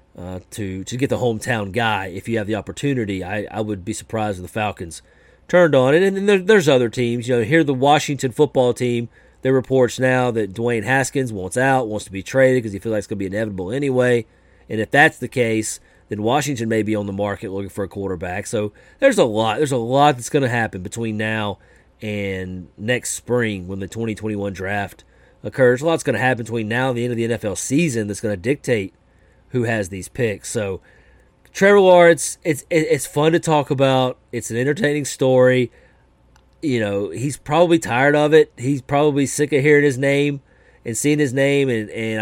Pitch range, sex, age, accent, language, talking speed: 105-140 Hz, male, 30-49, American, English, 215 wpm